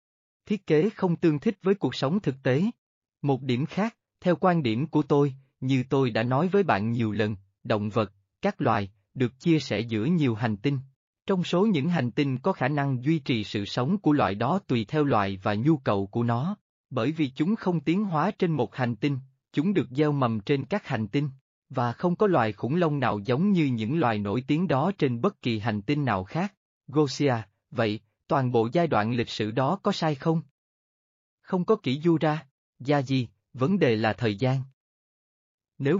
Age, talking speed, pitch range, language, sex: 20-39, 205 wpm, 115-165 Hz, Vietnamese, male